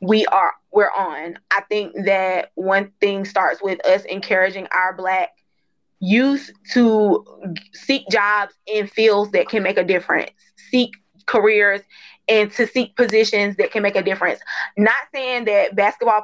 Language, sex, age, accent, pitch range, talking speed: English, female, 20-39, American, 205-255 Hz, 150 wpm